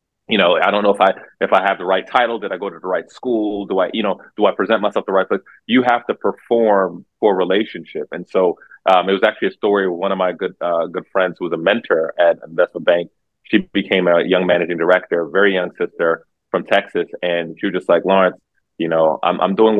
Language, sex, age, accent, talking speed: English, male, 30-49, American, 255 wpm